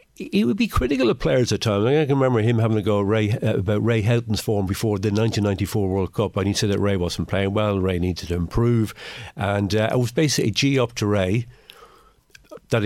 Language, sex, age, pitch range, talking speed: English, male, 60-79, 100-125 Hz, 230 wpm